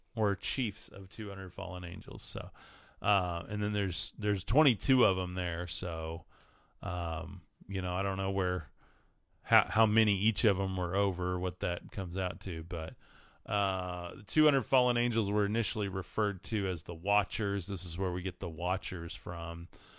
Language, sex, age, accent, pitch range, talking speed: English, male, 30-49, American, 90-105 Hz, 170 wpm